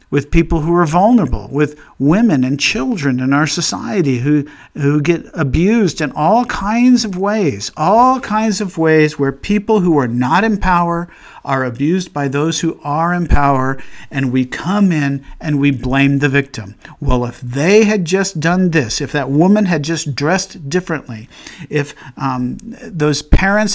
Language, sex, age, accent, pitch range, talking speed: English, male, 50-69, American, 135-180 Hz, 170 wpm